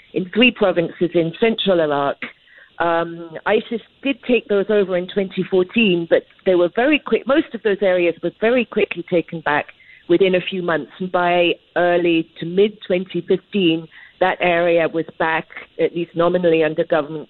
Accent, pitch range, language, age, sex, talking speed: British, 165-200 Hz, English, 50-69, female, 165 wpm